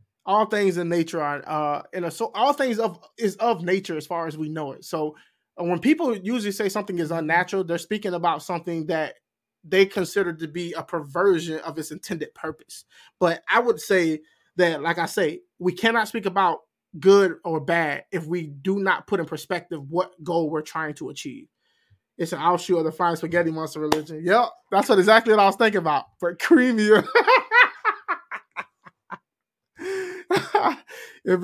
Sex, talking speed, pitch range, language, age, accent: male, 180 wpm, 165-215 Hz, English, 20-39, American